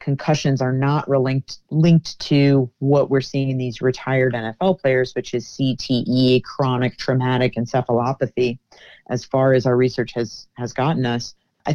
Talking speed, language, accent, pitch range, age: 155 wpm, English, American, 125-140 Hz, 30-49